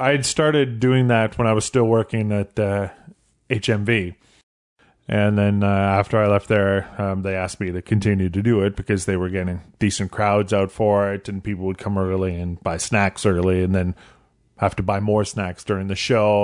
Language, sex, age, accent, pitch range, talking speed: English, male, 30-49, American, 100-115 Hz, 205 wpm